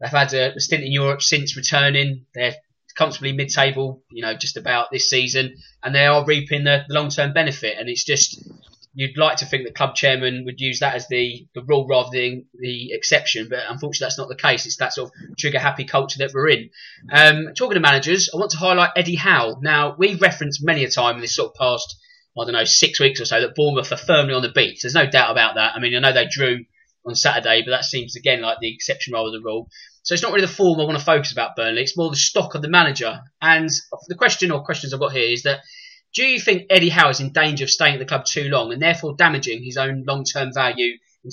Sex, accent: male, British